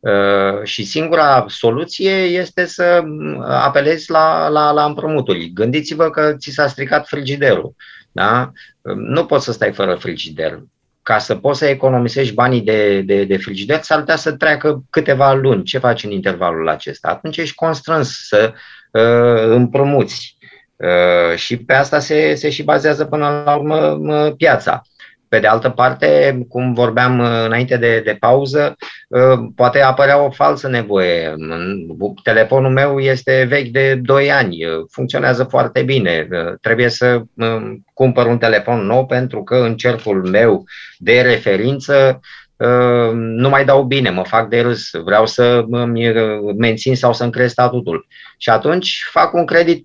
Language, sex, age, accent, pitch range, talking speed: Romanian, male, 30-49, native, 110-140 Hz, 140 wpm